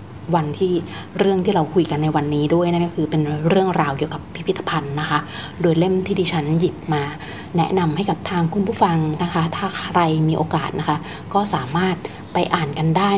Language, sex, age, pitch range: Thai, female, 30-49, 155-190 Hz